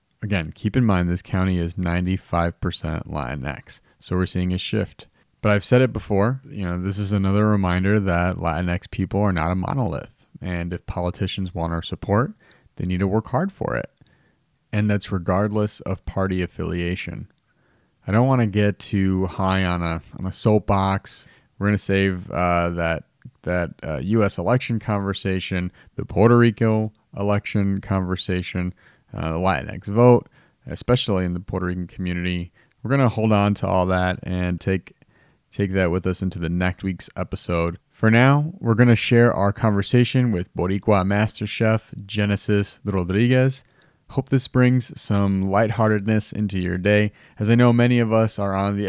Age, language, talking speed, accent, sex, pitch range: 30-49, English, 170 wpm, American, male, 90-110 Hz